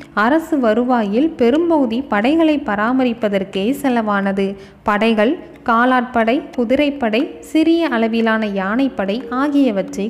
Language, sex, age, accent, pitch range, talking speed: Tamil, female, 20-39, native, 215-285 Hz, 75 wpm